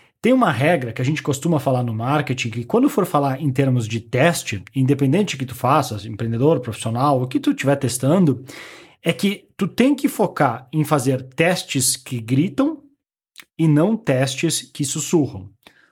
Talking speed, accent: 170 wpm, Brazilian